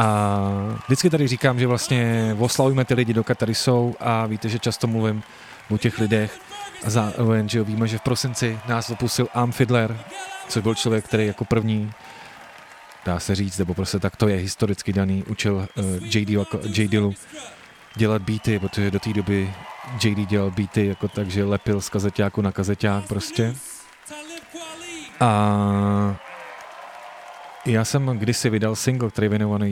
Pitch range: 100-115 Hz